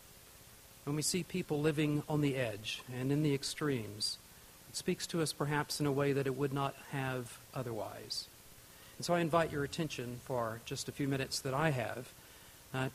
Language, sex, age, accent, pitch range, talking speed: English, male, 50-69, American, 125-155 Hz, 190 wpm